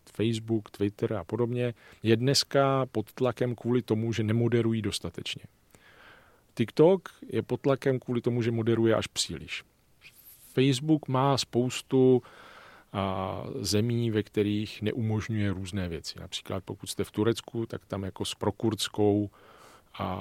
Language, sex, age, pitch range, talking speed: Czech, male, 40-59, 100-120 Hz, 125 wpm